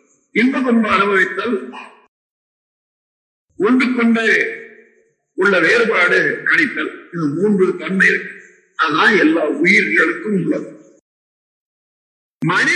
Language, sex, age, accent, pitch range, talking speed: Tamil, male, 50-69, native, 205-320 Hz, 75 wpm